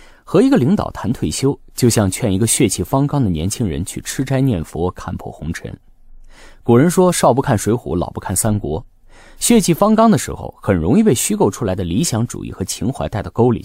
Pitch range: 95-155 Hz